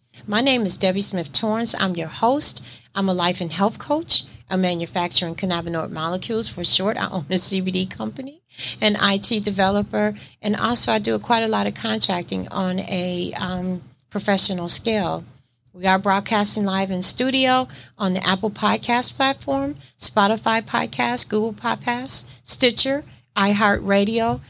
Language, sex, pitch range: English, female, 170-210 Hz